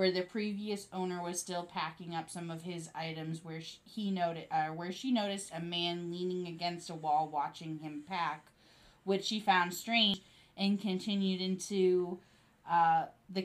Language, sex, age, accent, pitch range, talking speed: English, female, 20-39, American, 155-185 Hz, 170 wpm